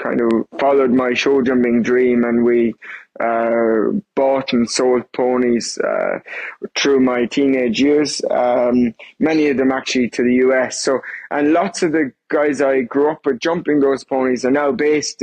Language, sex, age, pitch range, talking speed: English, male, 20-39, 125-140 Hz, 170 wpm